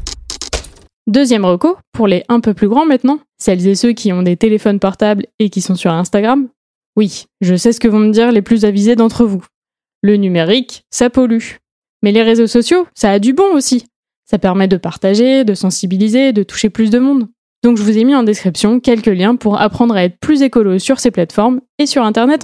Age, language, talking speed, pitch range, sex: 20-39, French, 215 wpm, 195-255 Hz, female